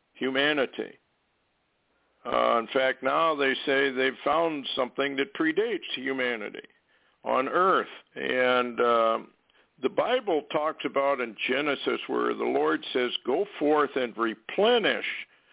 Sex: male